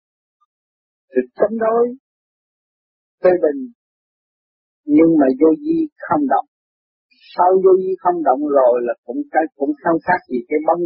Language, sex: Vietnamese, male